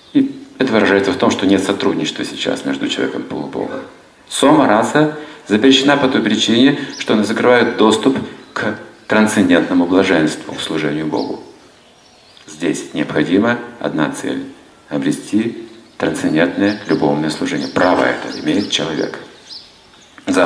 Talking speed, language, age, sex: 120 wpm, Russian, 50-69, male